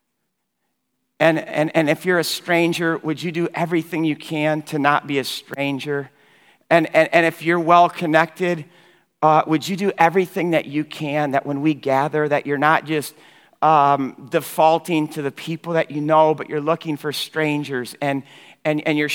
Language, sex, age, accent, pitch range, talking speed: English, male, 50-69, American, 155-200 Hz, 180 wpm